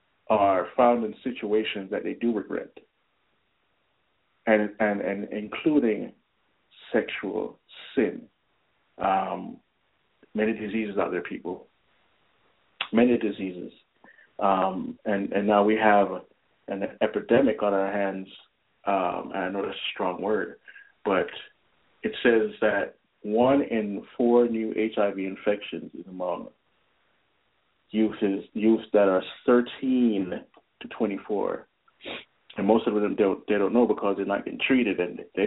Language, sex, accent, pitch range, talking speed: English, male, American, 105-120 Hz, 130 wpm